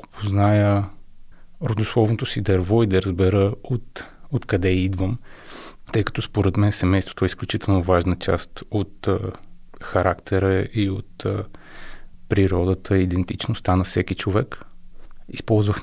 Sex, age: male, 30-49